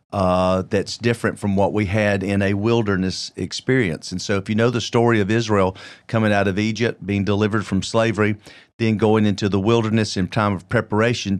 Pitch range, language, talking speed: 100-115 Hz, English, 195 wpm